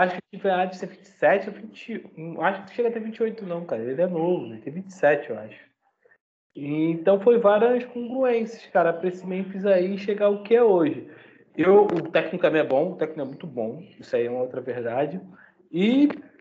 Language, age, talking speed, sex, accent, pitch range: Portuguese, 20-39, 210 wpm, male, Brazilian, 155-195 Hz